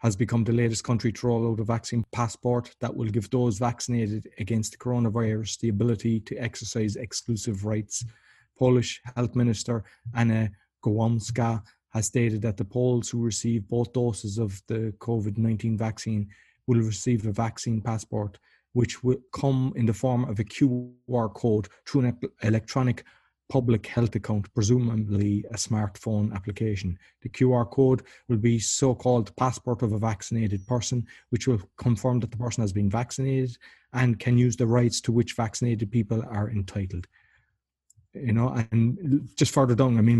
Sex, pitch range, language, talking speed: male, 110-120 Hz, English, 160 wpm